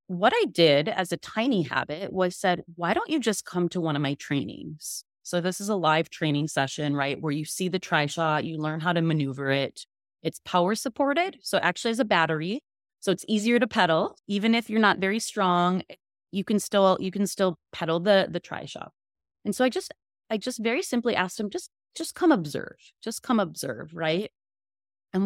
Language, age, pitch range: English, 30-49, 160-215 Hz